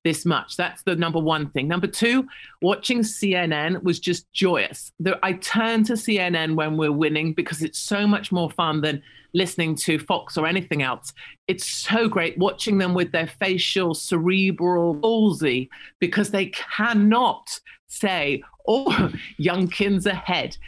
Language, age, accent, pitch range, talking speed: English, 40-59, British, 165-205 Hz, 150 wpm